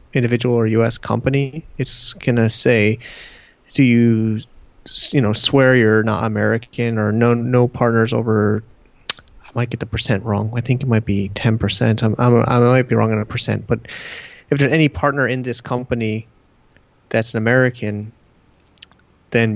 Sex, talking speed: male, 165 wpm